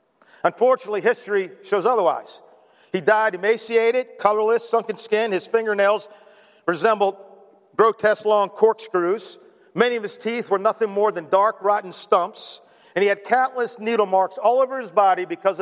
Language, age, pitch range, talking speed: English, 50-69, 185-220 Hz, 145 wpm